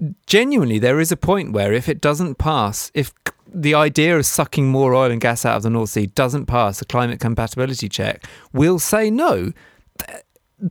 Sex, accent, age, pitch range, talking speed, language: male, British, 30-49, 105-175 Hz, 190 wpm, English